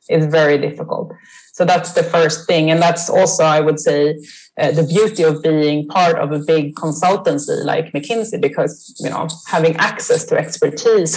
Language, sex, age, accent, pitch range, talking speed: English, female, 30-49, Swedish, 160-205 Hz, 175 wpm